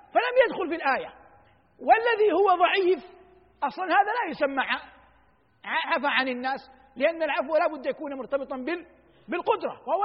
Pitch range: 270-335 Hz